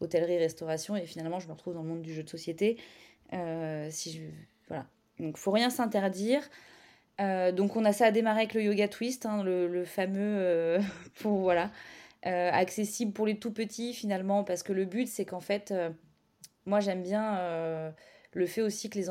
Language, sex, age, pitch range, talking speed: French, female, 20-39, 170-205 Hz, 200 wpm